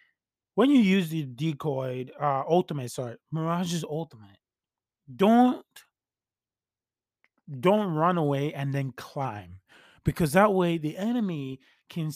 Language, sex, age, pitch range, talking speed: English, male, 20-39, 130-165 Hz, 115 wpm